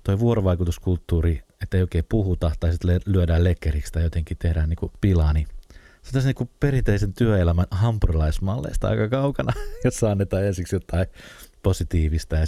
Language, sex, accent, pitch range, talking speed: Finnish, male, native, 85-110 Hz, 155 wpm